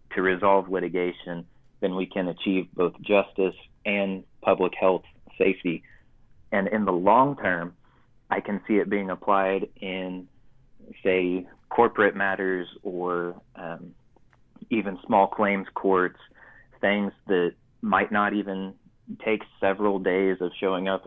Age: 30-49